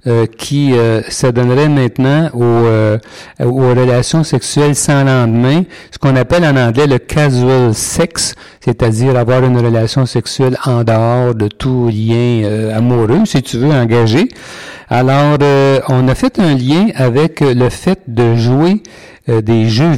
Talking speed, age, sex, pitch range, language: 155 wpm, 60-79, male, 120-150 Hz, French